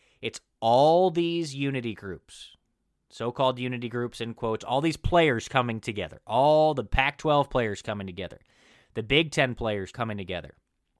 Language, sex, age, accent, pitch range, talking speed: English, male, 20-39, American, 110-150 Hz, 145 wpm